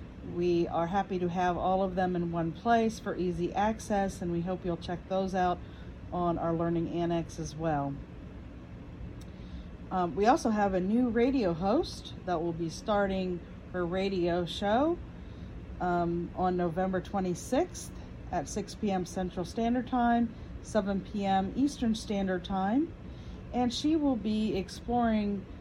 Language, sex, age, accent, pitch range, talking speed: English, female, 40-59, American, 180-215 Hz, 145 wpm